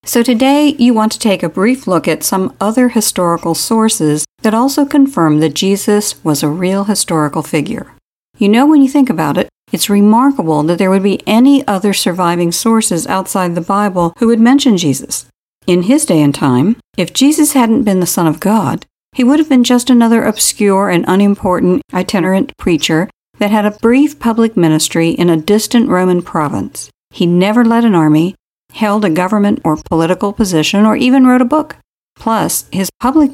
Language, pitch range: English, 170-230 Hz